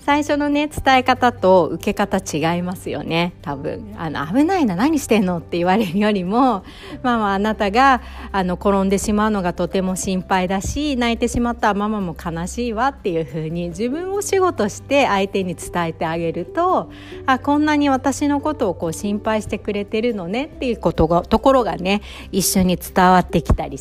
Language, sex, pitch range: Japanese, female, 165-255 Hz